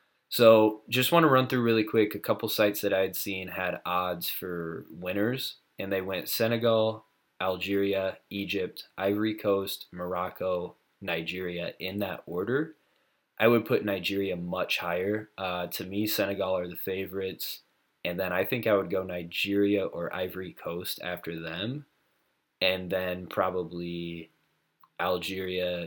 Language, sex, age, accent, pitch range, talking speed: English, male, 20-39, American, 85-100 Hz, 145 wpm